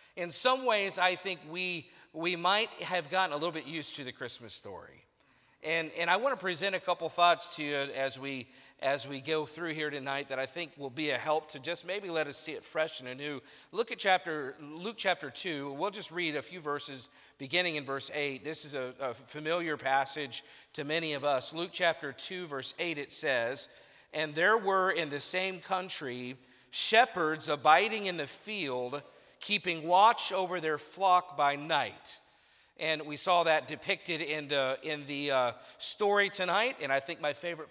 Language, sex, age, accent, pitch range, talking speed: English, male, 50-69, American, 145-190 Hz, 195 wpm